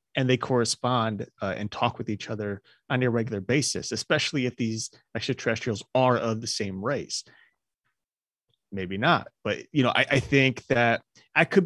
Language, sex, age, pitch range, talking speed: English, male, 30-49, 110-135 Hz, 170 wpm